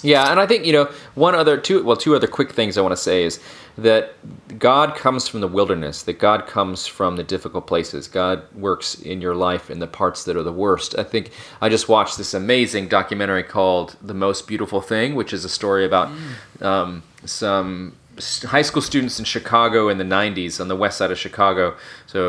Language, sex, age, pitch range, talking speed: English, male, 30-49, 95-110 Hz, 215 wpm